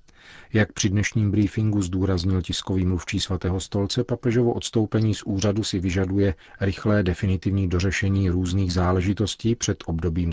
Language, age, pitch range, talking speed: Czech, 40-59, 90-100 Hz, 130 wpm